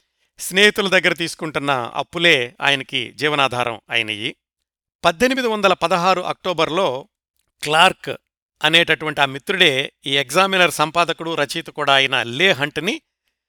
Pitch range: 150-190 Hz